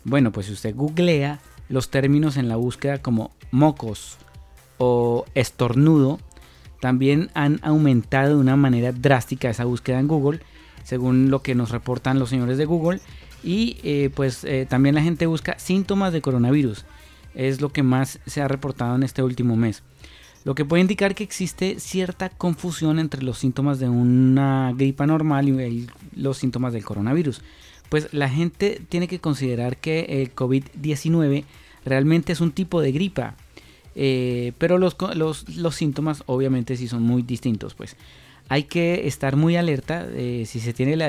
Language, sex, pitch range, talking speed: Spanish, male, 120-155 Hz, 165 wpm